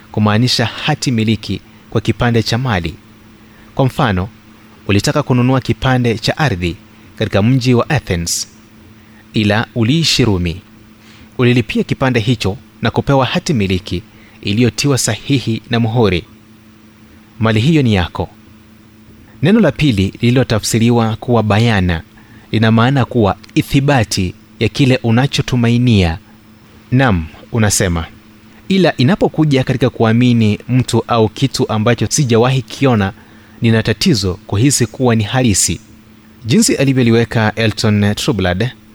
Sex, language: male, Swahili